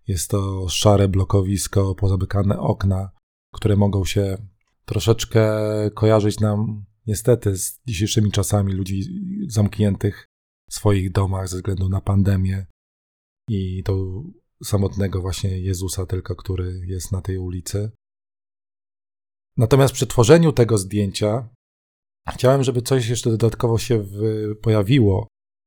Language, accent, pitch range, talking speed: Polish, native, 100-115 Hz, 110 wpm